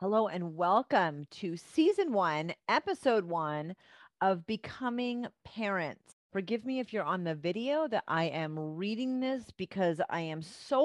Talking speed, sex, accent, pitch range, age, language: 150 wpm, female, American, 160-205 Hz, 30-49, English